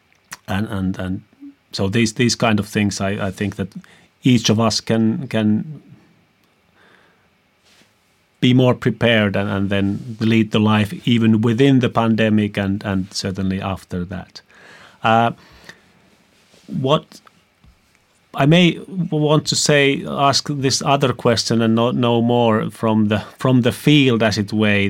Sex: male